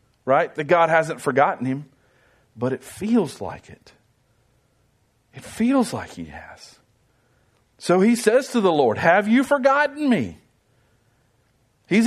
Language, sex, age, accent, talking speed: English, male, 50-69, American, 135 wpm